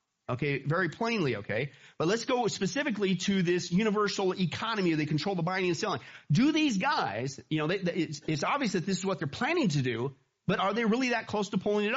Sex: male